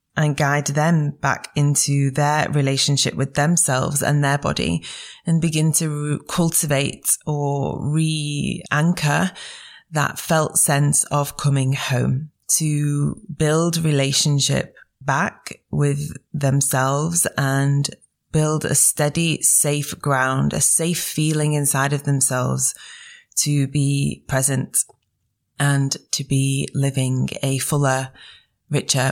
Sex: female